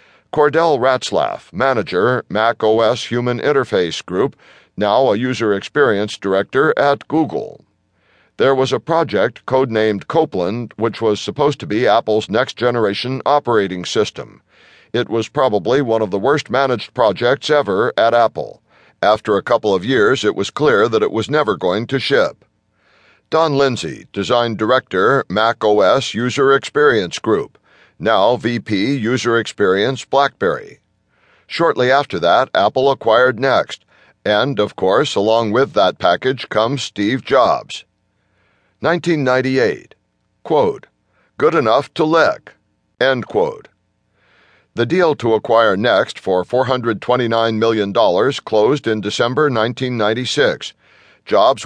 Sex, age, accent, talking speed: male, 60-79, American, 125 wpm